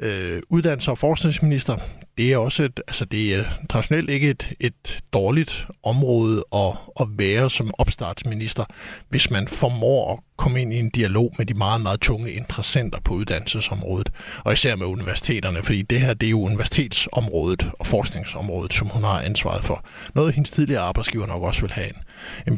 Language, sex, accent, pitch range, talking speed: Danish, male, native, 105-135 Hz, 180 wpm